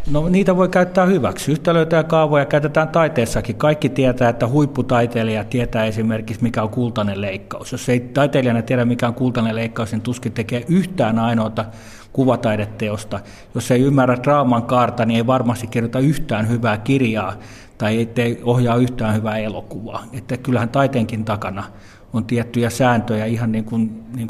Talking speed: 155 wpm